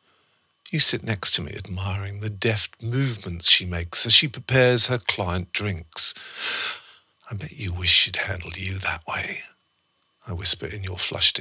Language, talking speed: English, 165 wpm